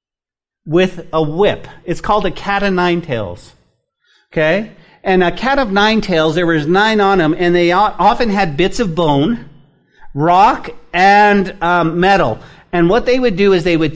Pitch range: 150-200 Hz